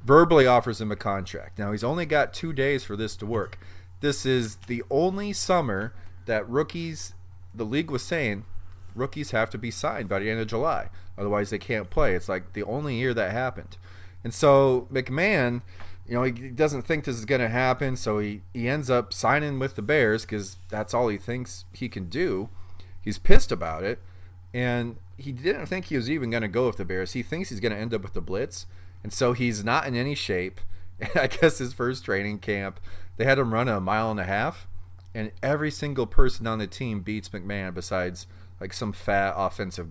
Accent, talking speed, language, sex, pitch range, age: American, 210 wpm, English, male, 95-125 Hz, 30-49